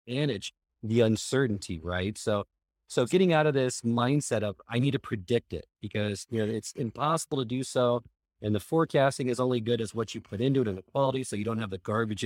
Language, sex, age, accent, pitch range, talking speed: English, male, 30-49, American, 105-135 Hz, 225 wpm